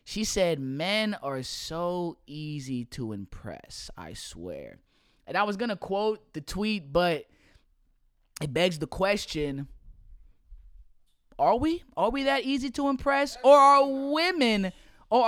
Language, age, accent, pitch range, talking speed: English, 20-39, American, 150-205 Hz, 140 wpm